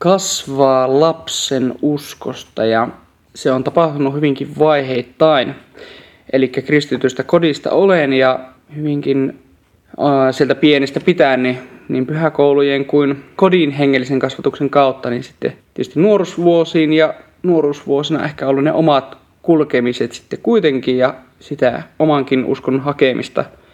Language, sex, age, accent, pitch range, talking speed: Finnish, male, 20-39, native, 135-160 Hz, 115 wpm